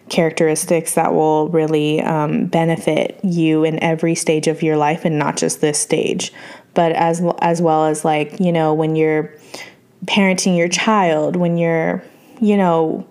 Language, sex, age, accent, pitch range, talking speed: English, female, 20-39, American, 165-200 Hz, 160 wpm